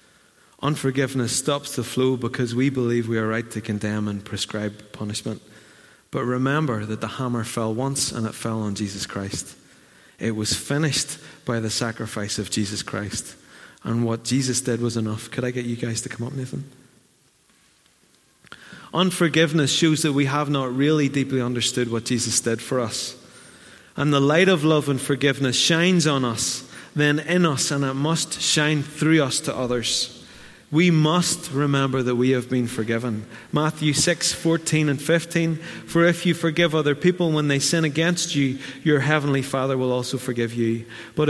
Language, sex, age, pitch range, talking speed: English, male, 30-49, 120-155 Hz, 175 wpm